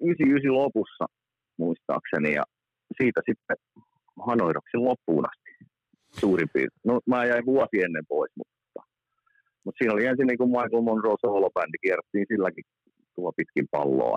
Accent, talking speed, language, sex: native, 130 wpm, Finnish, male